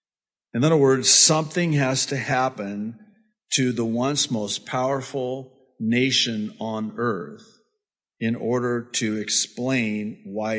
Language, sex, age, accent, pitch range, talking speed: English, male, 50-69, American, 105-140 Hz, 115 wpm